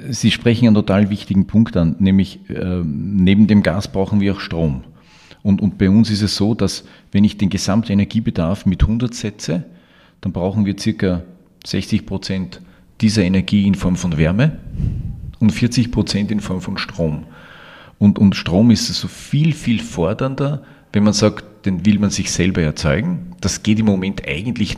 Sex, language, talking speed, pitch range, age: male, German, 175 wpm, 95-120 Hz, 40-59